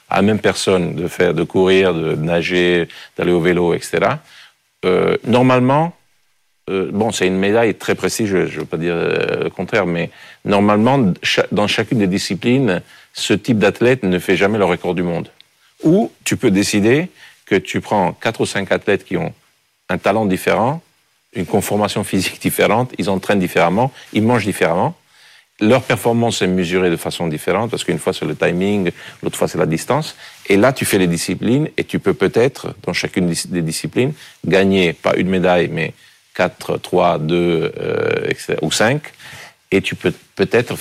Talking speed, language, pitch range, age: 180 wpm, French, 85-110 Hz, 50-69